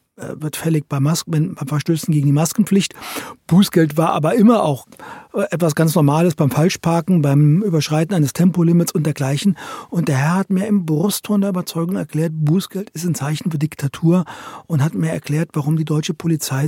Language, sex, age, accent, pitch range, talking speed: German, male, 40-59, German, 150-180 Hz, 175 wpm